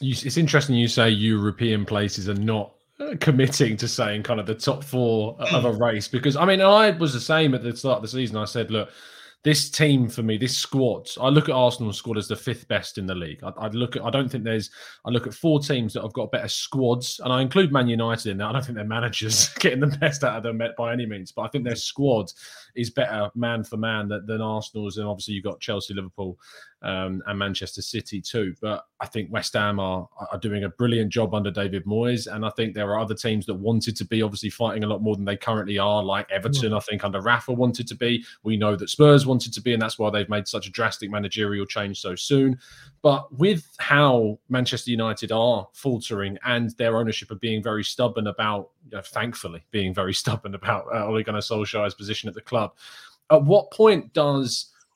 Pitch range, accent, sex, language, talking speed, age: 105-125 Hz, British, male, English, 230 wpm, 20-39